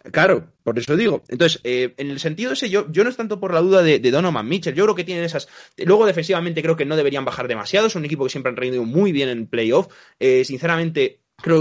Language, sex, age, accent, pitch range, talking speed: Spanish, male, 20-39, Spanish, 130-175 Hz, 255 wpm